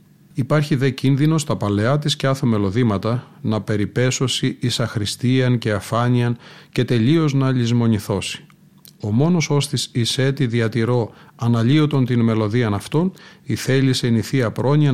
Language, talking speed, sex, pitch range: Greek, 130 wpm, male, 110-140 Hz